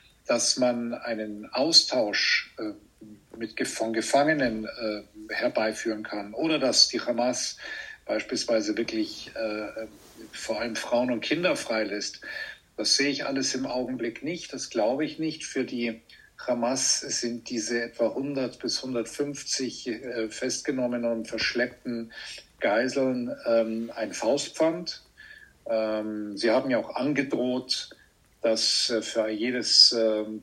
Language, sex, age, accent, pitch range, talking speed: German, male, 50-69, German, 110-130 Hz, 120 wpm